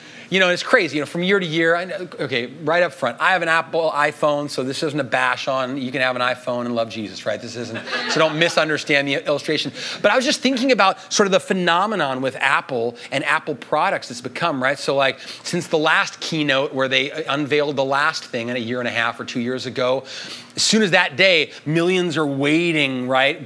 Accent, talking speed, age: American, 230 wpm, 30-49